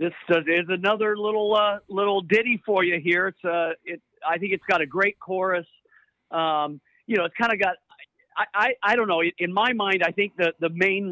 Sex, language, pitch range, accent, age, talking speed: male, English, 160-195 Hz, American, 50-69, 215 wpm